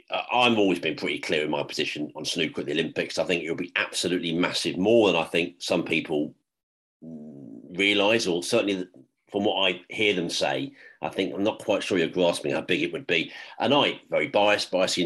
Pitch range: 90-110 Hz